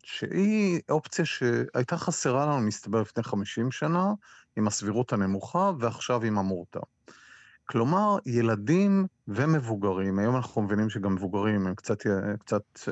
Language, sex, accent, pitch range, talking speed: Hebrew, male, native, 105-135 Hz, 120 wpm